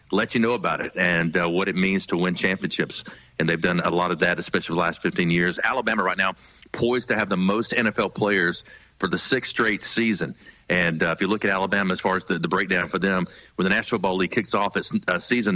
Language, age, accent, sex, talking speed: English, 40-59, American, male, 250 wpm